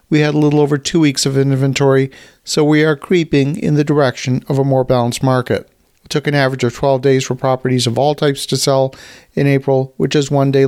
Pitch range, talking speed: 130-150 Hz, 230 wpm